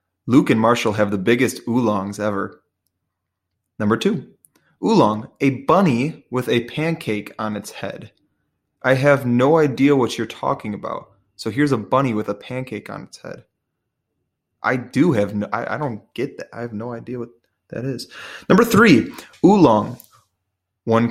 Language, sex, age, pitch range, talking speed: English, male, 20-39, 110-140 Hz, 160 wpm